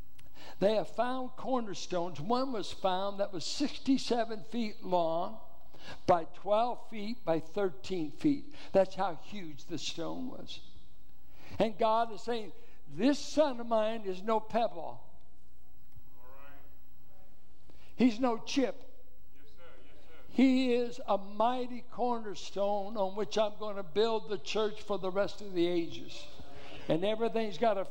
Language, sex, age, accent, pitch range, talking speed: English, male, 60-79, American, 175-225 Hz, 130 wpm